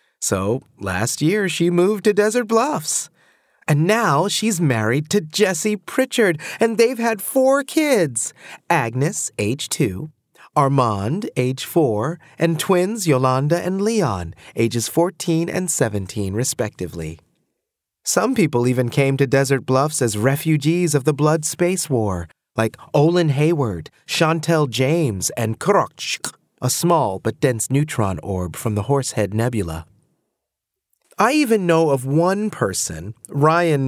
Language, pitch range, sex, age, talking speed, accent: English, 120-185 Hz, male, 30-49, 130 wpm, American